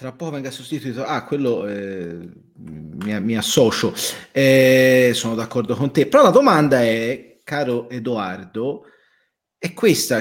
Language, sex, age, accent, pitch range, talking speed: Italian, male, 40-59, native, 115-165 Hz, 125 wpm